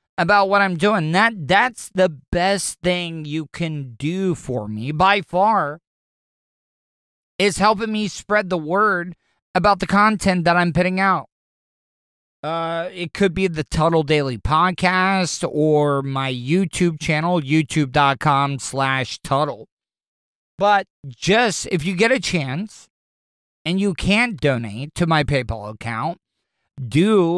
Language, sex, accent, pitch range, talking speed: English, male, American, 145-185 Hz, 130 wpm